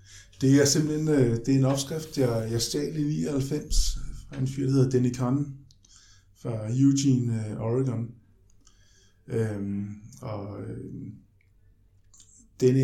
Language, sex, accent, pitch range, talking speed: Danish, male, native, 105-130 Hz, 105 wpm